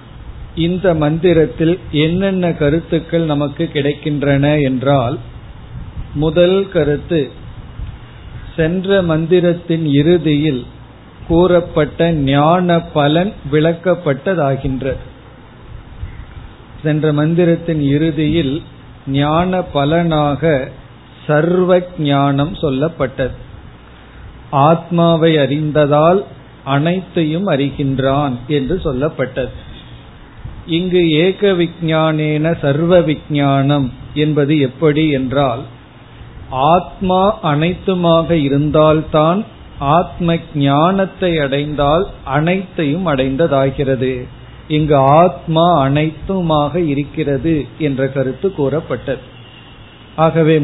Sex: male